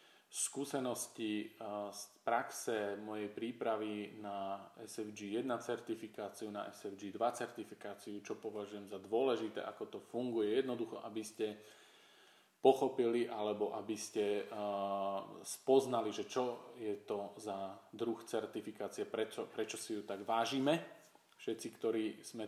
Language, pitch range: Slovak, 100-120 Hz